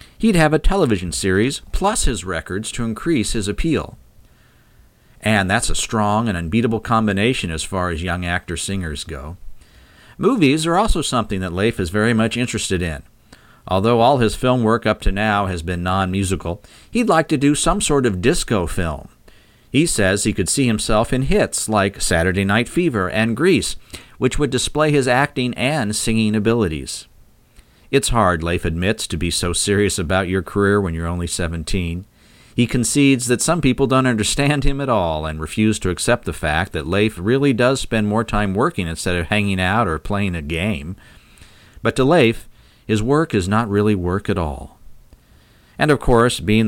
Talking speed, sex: 180 wpm, male